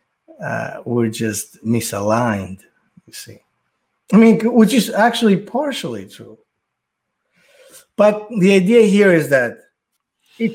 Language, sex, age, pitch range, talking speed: English, male, 50-69, 110-165 Hz, 115 wpm